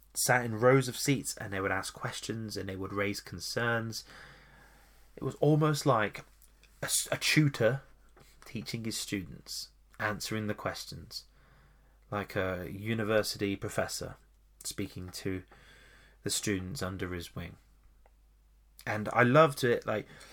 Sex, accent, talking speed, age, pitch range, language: male, British, 130 wpm, 20-39, 100-120 Hz, English